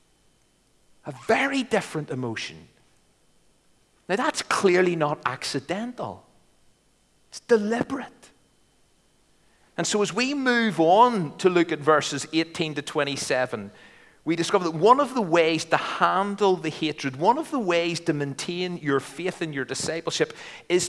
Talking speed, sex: 135 wpm, male